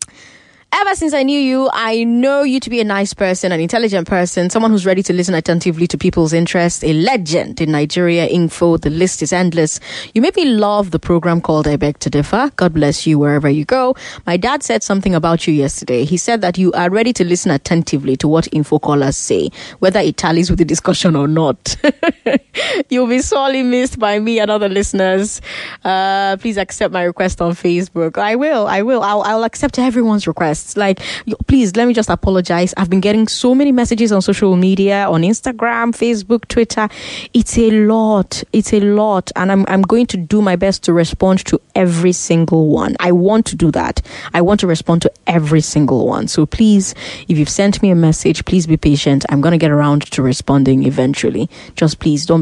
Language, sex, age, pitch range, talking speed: English, female, 20-39, 165-215 Hz, 205 wpm